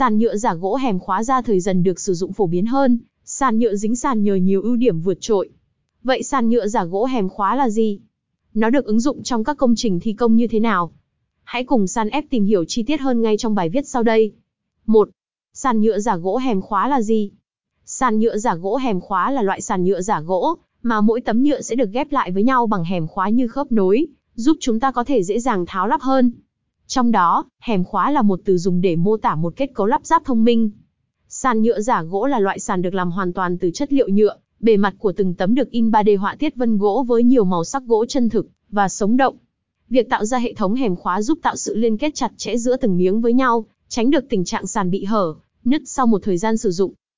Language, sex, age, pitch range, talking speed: Vietnamese, female, 20-39, 195-250 Hz, 250 wpm